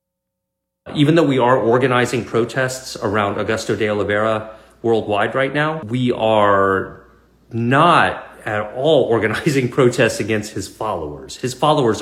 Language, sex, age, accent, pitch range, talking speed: English, male, 30-49, American, 105-140 Hz, 130 wpm